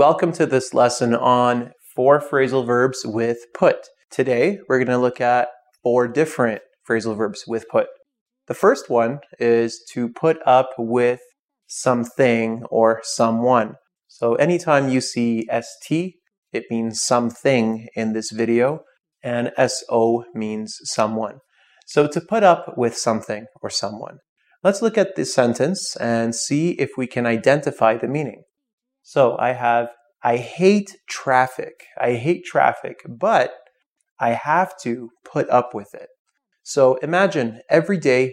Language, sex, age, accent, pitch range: Chinese, male, 30-49, American, 120-170 Hz